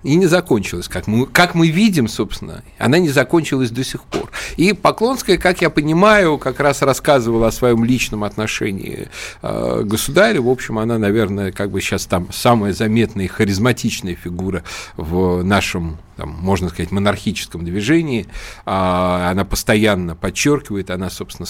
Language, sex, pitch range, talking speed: Russian, male, 100-140 Hz, 150 wpm